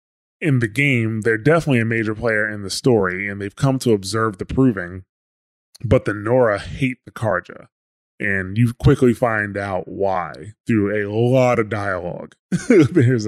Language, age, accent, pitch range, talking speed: English, 20-39, American, 100-125 Hz, 165 wpm